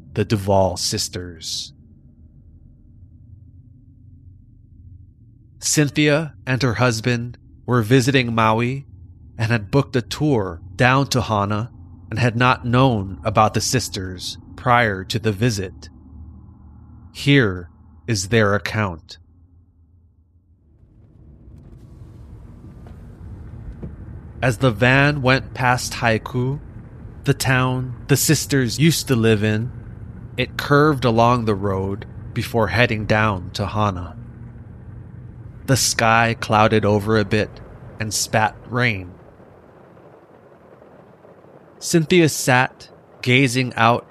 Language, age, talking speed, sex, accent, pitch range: English, 30-49, 95 wpm, male, American, 100-125 Hz